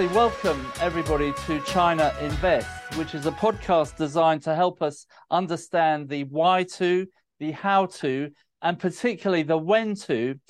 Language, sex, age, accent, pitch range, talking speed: English, male, 40-59, British, 150-180 Hz, 145 wpm